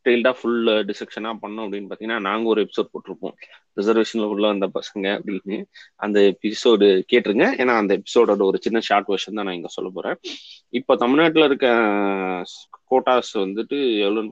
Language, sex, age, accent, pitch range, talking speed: Tamil, male, 30-49, native, 105-135 Hz, 140 wpm